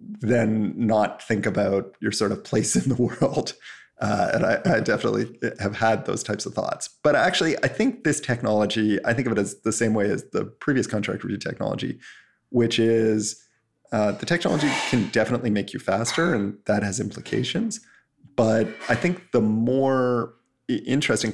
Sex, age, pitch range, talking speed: male, 30-49, 105-120 Hz, 175 wpm